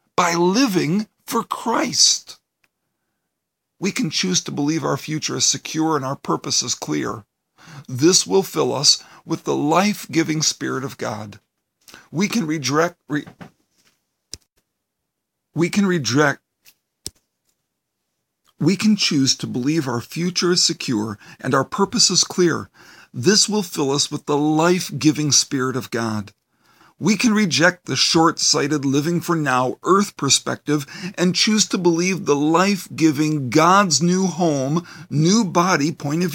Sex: male